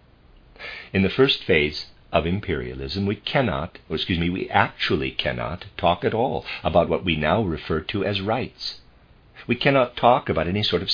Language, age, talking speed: English, 50-69, 175 wpm